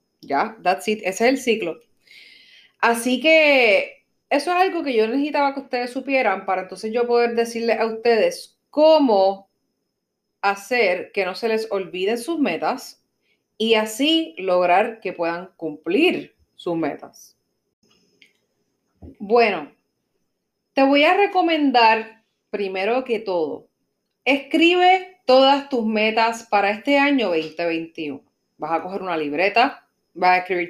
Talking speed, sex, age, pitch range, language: 130 wpm, female, 30-49, 190-245 Hz, Spanish